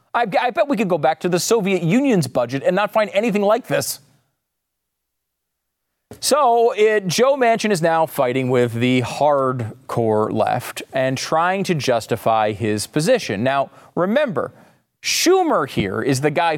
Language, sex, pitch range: English, male, 120-185 Hz